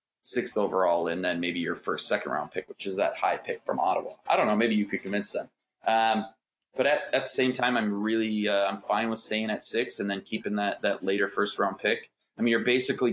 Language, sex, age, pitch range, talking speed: English, male, 20-39, 105-120 Hz, 245 wpm